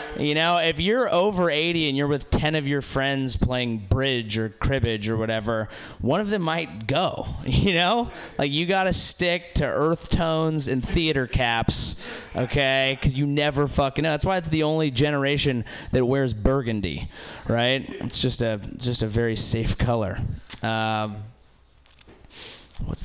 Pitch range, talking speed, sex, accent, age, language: 120-165 Hz, 165 wpm, male, American, 20-39, English